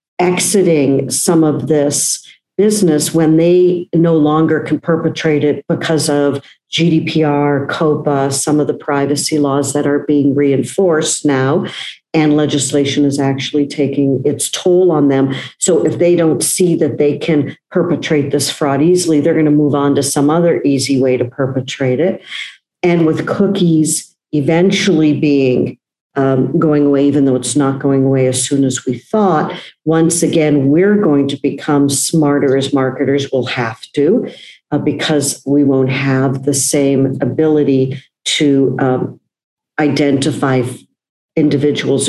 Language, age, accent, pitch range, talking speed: English, 50-69, American, 135-160 Hz, 145 wpm